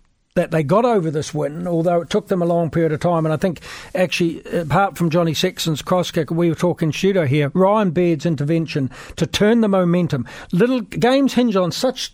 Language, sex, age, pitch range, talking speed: English, male, 60-79, 160-190 Hz, 210 wpm